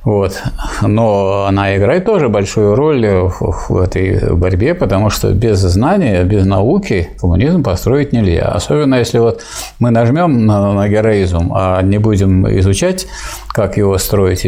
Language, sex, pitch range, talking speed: Russian, male, 95-115 Hz, 145 wpm